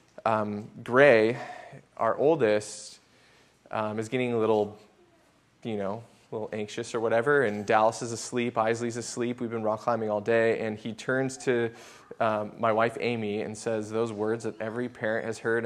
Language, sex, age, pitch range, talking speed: English, male, 20-39, 110-145 Hz, 170 wpm